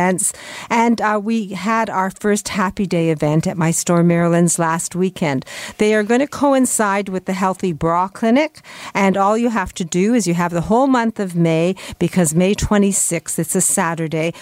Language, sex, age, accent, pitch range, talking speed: English, female, 50-69, American, 175-225 Hz, 185 wpm